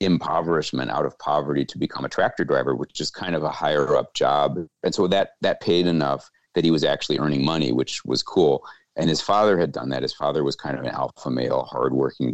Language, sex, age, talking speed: English, male, 40-59, 230 wpm